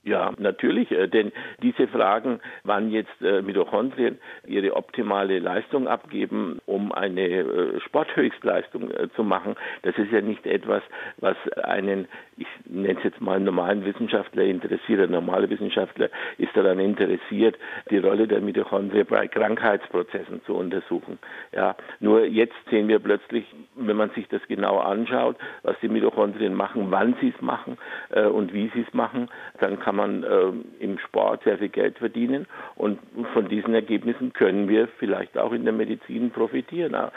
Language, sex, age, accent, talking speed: German, male, 60-79, German, 155 wpm